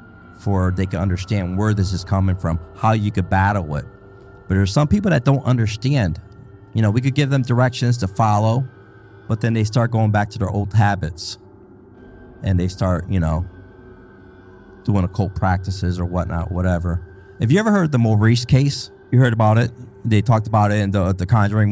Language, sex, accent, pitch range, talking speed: English, male, American, 85-105 Hz, 195 wpm